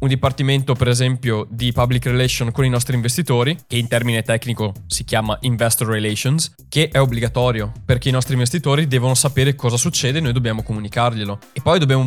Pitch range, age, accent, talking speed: 120-145 Hz, 20-39, native, 185 wpm